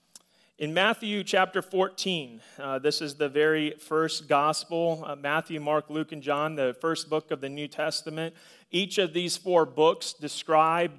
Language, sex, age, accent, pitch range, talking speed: English, male, 30-49, American, 150-175 Hz, 165 wpm